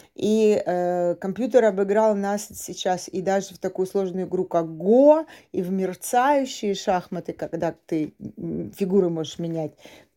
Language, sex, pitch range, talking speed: Russian, female, 170-210 Hz, 140 wpm